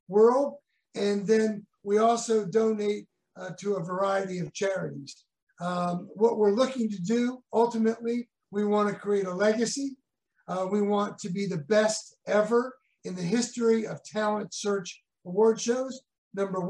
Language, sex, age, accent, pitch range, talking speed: English, male, 50-69, American, 180-225 Hz, 150 wpm